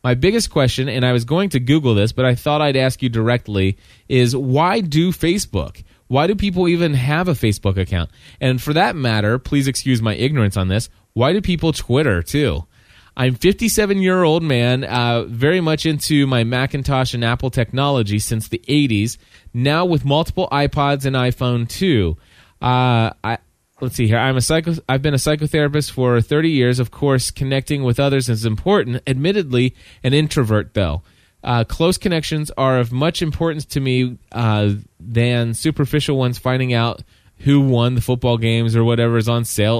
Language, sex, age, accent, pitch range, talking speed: English, male, 30-49, American, 115-155 Hz, 175 wpm